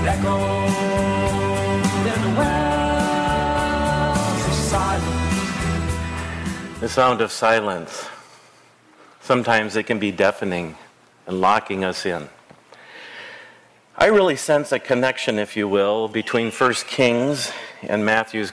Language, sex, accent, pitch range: English, male, American, 100-130 Hz